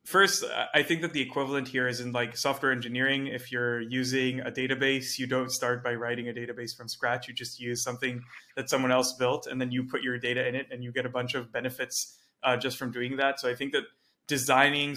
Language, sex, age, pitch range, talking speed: English, male, 20-39, 125-135 Hz, 235 wpm